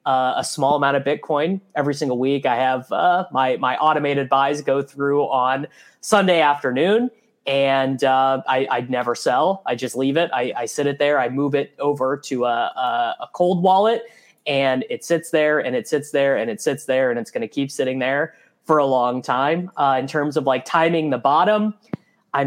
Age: 20-39